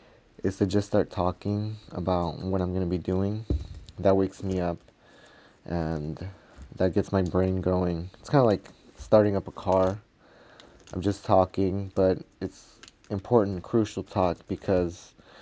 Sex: male